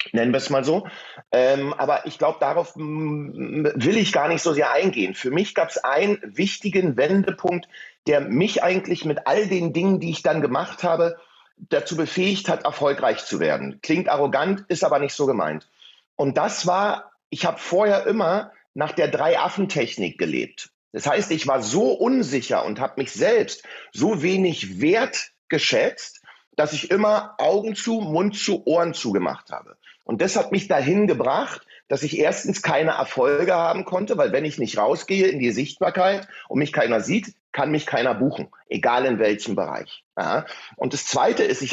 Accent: German